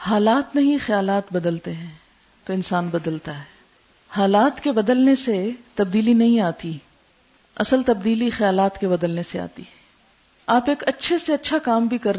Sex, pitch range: female, 205-255 Hz